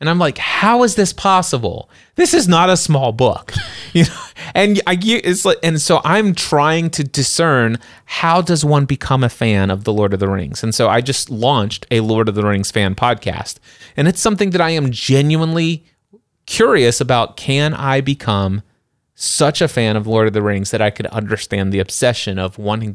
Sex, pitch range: male, 105-145 Hz